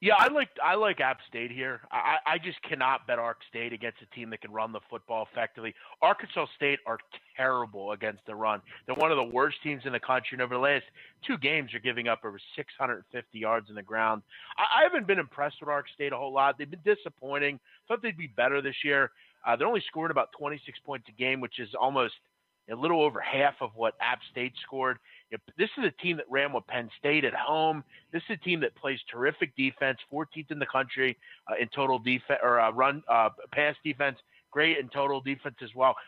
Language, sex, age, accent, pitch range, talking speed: English, male, 30-49, American, 125-160 Hz, 230 wpm